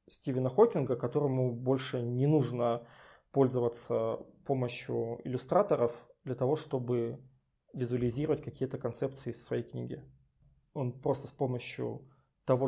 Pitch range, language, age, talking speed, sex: 125-140 Hz, Russian, 20-39, 110 wpm, male